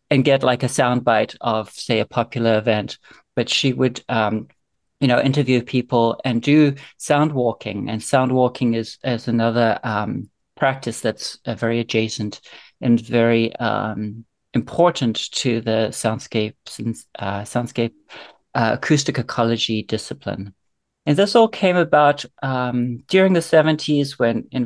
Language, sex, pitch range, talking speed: English, male, 115-140 Hz, 145 wpm